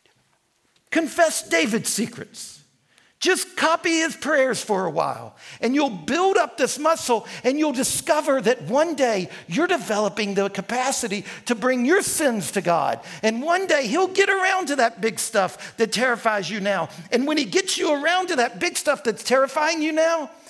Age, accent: 50-69, American